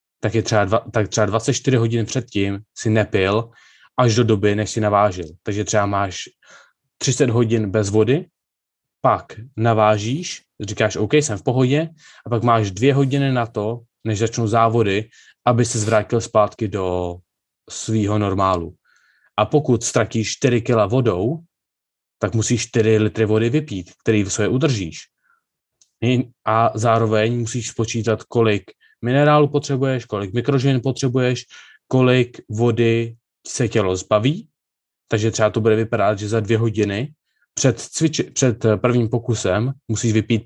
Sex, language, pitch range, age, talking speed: male, Czech, 110-125 Hz, 20-39, 140 wpm